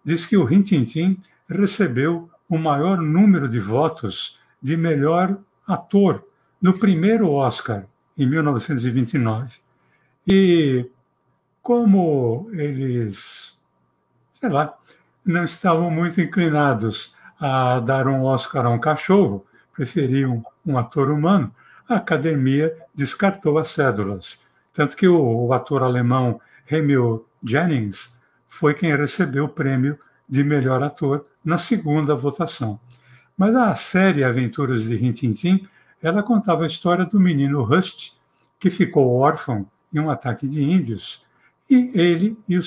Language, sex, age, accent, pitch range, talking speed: Portuguese, male, 60-79, Brazilian, 130-180 Hz, 125 wpm